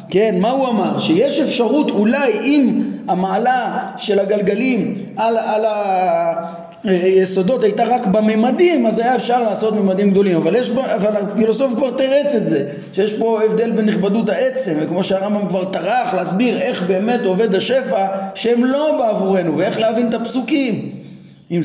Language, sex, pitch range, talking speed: Hebrew, male, 180-235 Hz, 150 wpm